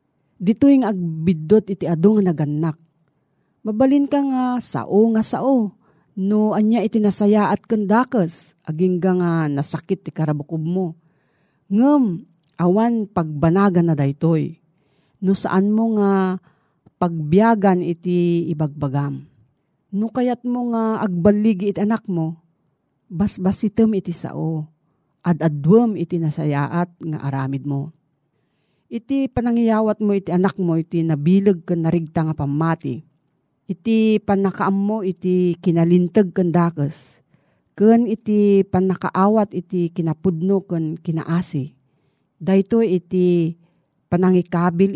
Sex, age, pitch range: female, 40-59, 160-205 Hz